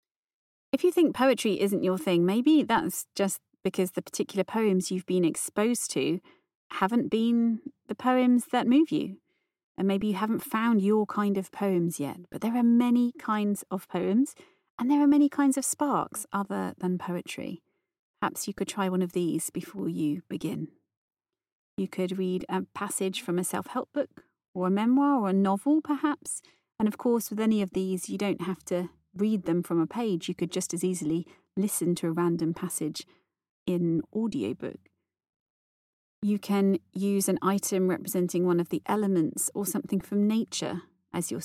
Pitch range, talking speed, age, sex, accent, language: 180-225 Hz, 175 wpm, 30-49, female, British, English